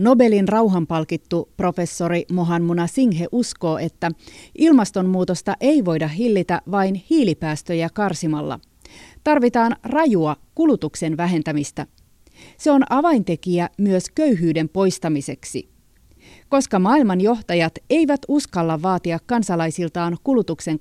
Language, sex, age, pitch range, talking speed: Finnish, female, 30-49, 170-220 Hz, 90 wpm